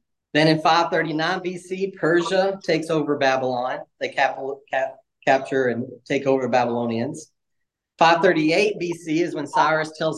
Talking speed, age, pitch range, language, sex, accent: 120 wpm, 30-49, 140-175 Hz, English, male, American